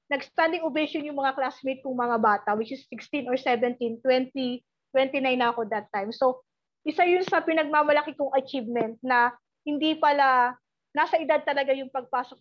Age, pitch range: 20-39, 245-305 Hz